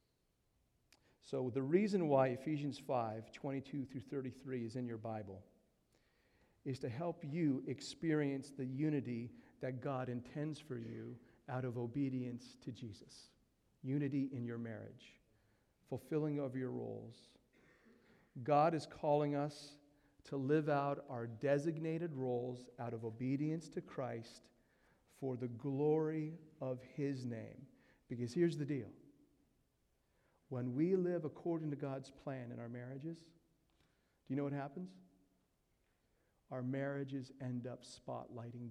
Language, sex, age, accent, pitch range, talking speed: English, male, 50-69, American, 120-145 Hz, 130 wpm